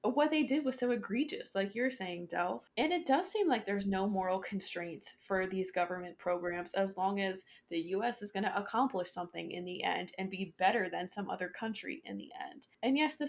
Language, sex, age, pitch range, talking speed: English, female, 20-39, 185-250 Hz, 225 wpm